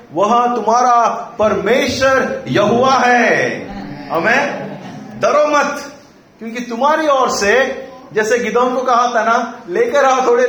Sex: male